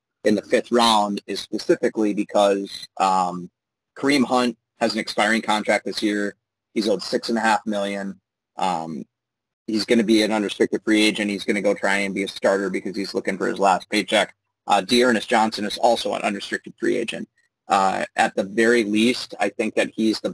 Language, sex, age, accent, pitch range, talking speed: English, male, 30-49, American, 100-115 Hz, 200 wpm